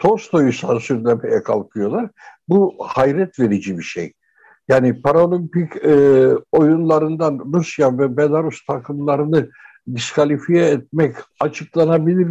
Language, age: Turkish, 60-79